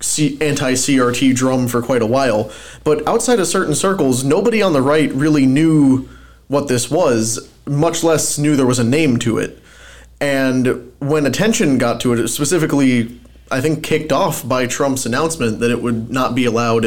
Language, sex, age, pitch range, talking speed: English, male, 20-39, 120-145 Hz, 180 wpm